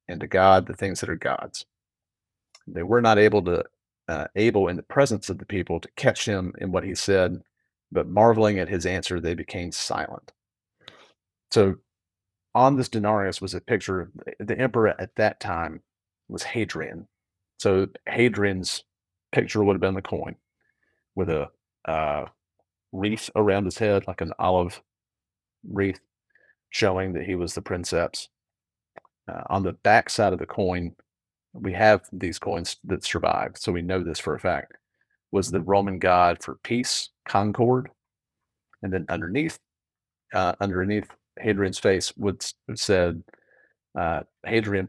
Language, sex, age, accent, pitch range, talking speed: English, male, 40-59, American, 90-105 Hz, 155 wpm